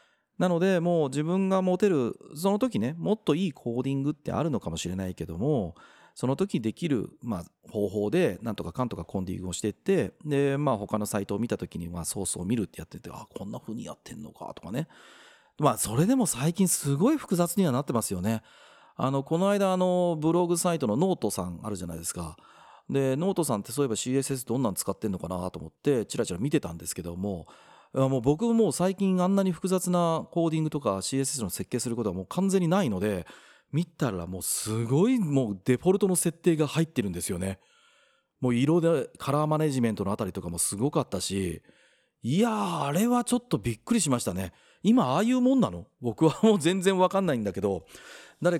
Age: 40-59